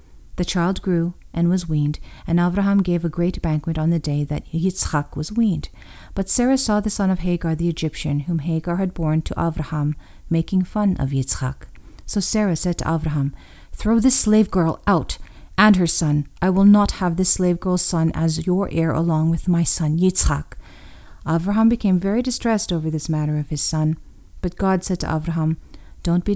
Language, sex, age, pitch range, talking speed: English, female, 40-59, 155-190 Hz, 190 wpm